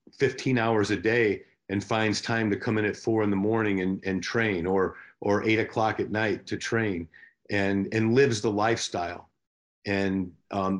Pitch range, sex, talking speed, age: 95-110 Hz, male, 185 wpm, 50-69